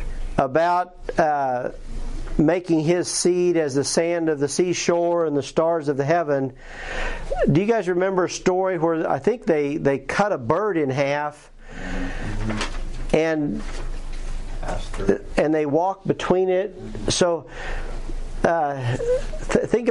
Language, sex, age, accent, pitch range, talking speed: English, male, 50-69, American, 140-170 Hz, 130 wpm